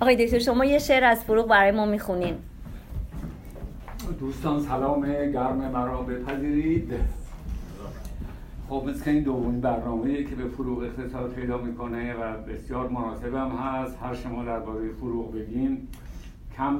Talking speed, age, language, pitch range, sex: 130 wpm, 60-79, Persian, 120-135 Hz, male